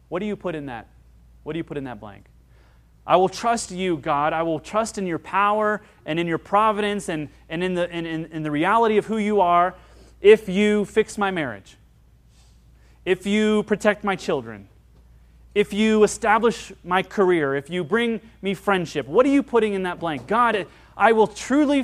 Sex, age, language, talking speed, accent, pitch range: male, 30-49, English, 190 wpm, American, 125-195 Hz